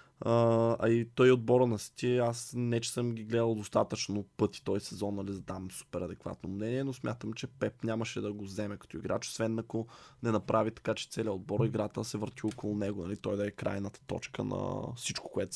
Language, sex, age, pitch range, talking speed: Bulgarian, male, 20-39, 105-125 Hz, 210 wpm